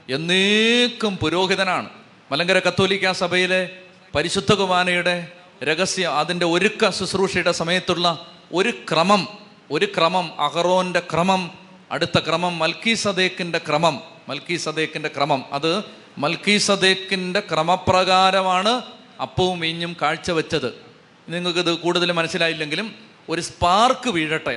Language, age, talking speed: Malayalam, 30-49, 95 wpm